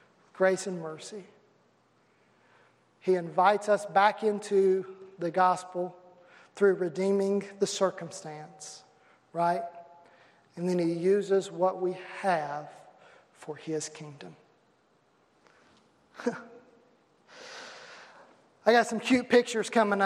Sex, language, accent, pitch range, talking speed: male, English, American, 180-235 Hz, 95 wpm